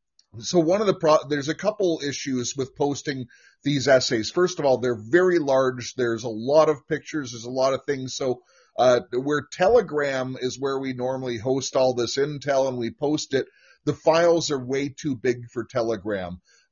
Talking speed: 190 wpm